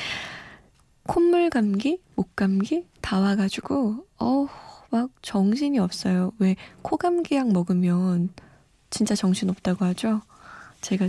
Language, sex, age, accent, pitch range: Korean, female, 20-39, native, 185-250 Hz